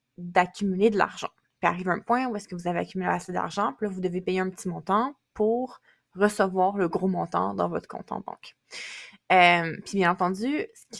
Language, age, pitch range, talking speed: French, 20-39, 180-205 Hz, 215 wpm